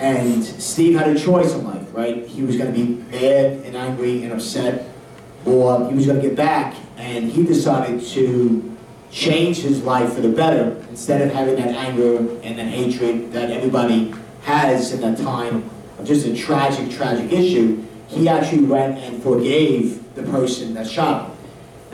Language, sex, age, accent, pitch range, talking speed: English, male, 40-59, American, 120-155 Hz, 170 wpm